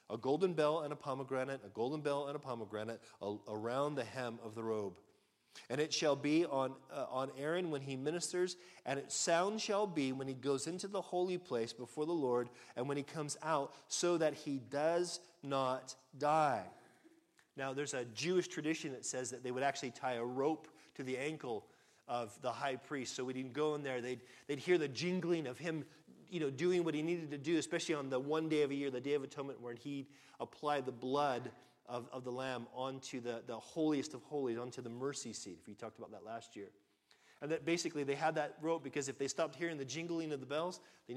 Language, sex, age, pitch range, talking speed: English, male, 40-59, 130-160 Hz, 225 wpm